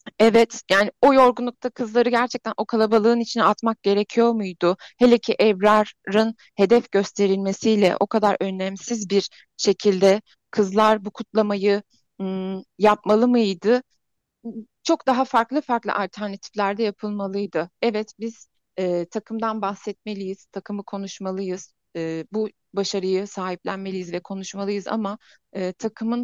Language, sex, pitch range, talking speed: Turkish, female, 195-230 Hz, 110 wpm